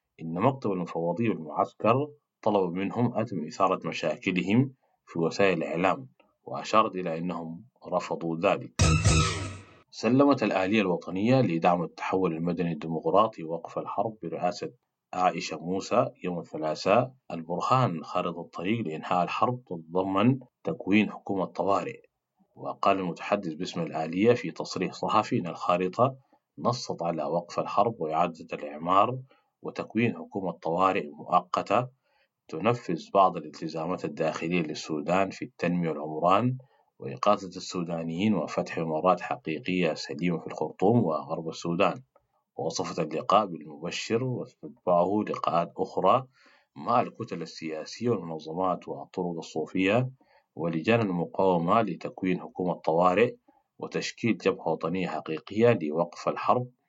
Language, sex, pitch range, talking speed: English, male, 85-115 Hz, 105 wpm